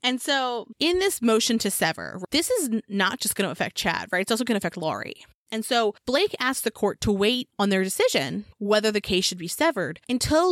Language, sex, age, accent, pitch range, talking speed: English, female, 20-39, American, 195-260 Hz, 230 wpm